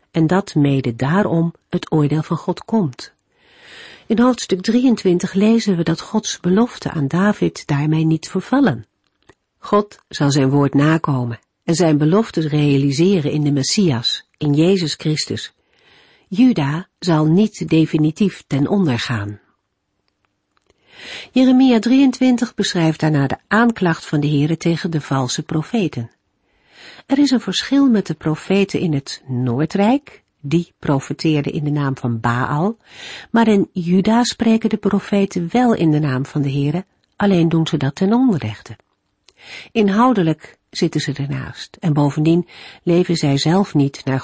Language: Dutch